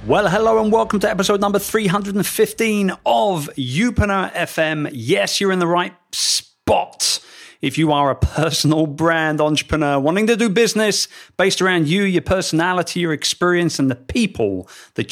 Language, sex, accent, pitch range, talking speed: English, male, British, 140-195 Hz, 155 wpm